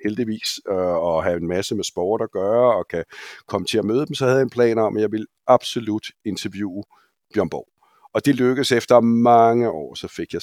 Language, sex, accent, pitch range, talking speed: Danish, male, native, 110-140 Hz, 220 wpm